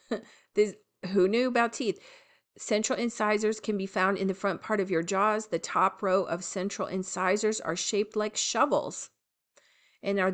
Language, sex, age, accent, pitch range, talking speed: English, female, 40-59, American, 185-235 Hz, 165 wpm